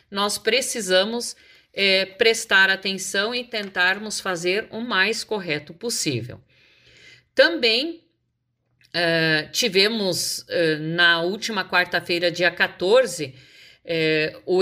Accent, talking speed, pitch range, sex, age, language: Brazilian, 80 wpm, 175-250 Hz, female, 50-69, Portuguese